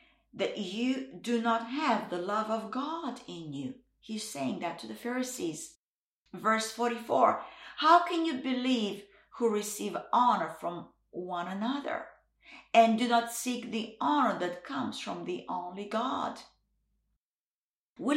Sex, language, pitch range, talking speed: female, English, 210-280 Hz, 140 wpm